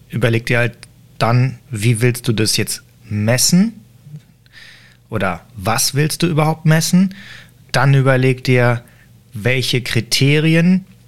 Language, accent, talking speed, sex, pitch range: German, German, 115 wpm, male, 115-140 Hz